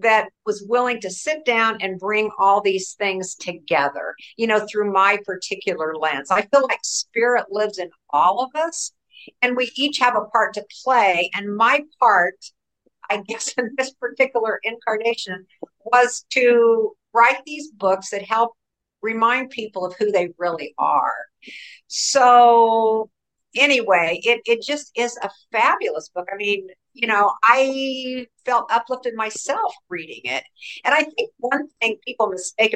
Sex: female